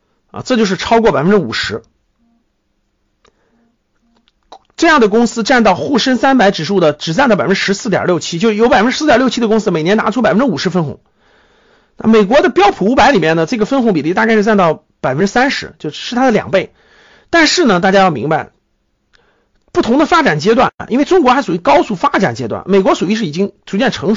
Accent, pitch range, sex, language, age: native, 195-285 Hz, male, Chinese, 50-69